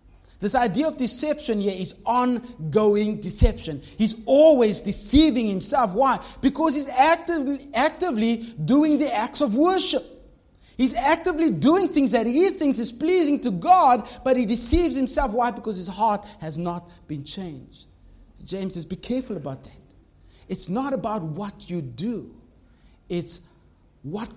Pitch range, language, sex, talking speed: 150-245 Hz, English, male, 145 wpm